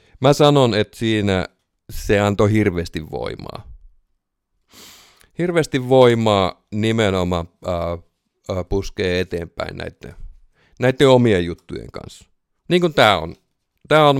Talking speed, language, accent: 105 wpm, Finnish, native